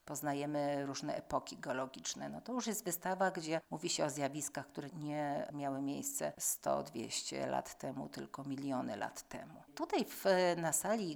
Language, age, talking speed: Polish, 50-69, 145 wpm